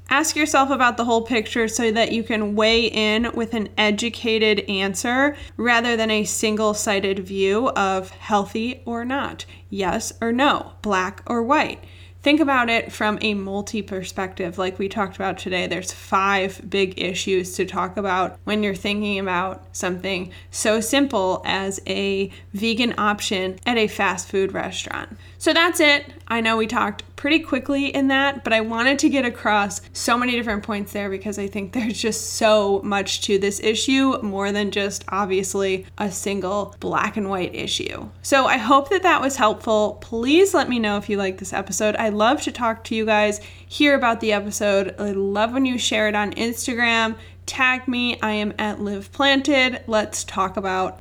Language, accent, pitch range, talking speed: English, American, 200-255 Hz, 180 wpm